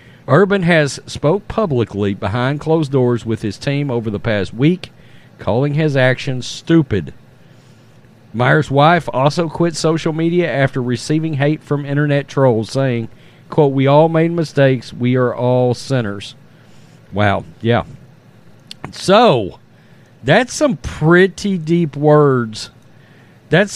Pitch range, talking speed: 120-160 Hz, 125 wpm